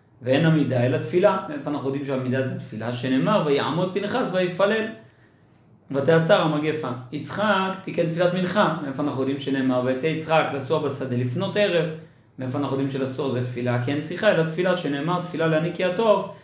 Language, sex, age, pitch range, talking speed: Hebrew, male, 30-49, 135-180 Hz, 165 wpm